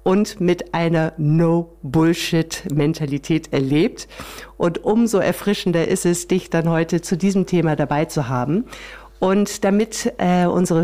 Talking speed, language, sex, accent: 125 wpm, German, female, German